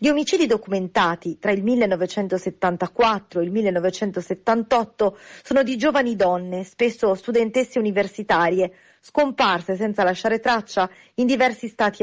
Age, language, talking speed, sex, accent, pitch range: 40-59, Italian, 115 wpm, female, native, 185-235 Hz